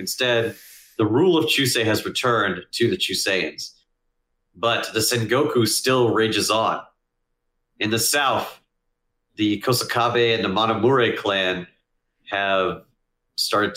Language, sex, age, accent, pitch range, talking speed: English, male, 40-59, American, 90-115 Hz, 120 wpm